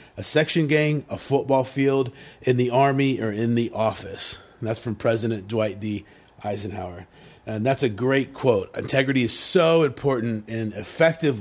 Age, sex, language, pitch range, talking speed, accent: 30-49, male, English, 115-145 Hz, 165 wpm, American